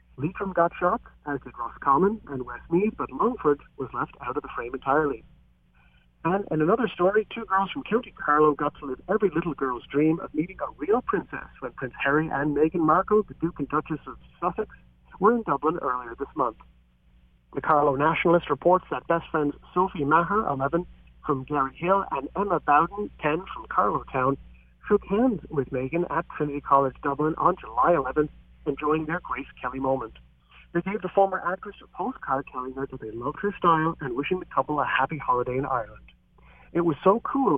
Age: 40-59